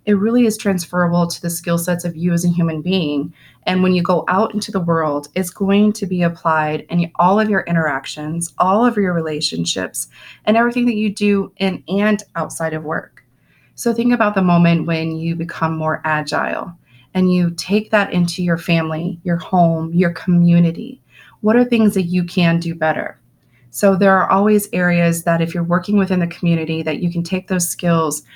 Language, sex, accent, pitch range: English, female, American, 165-195 Hz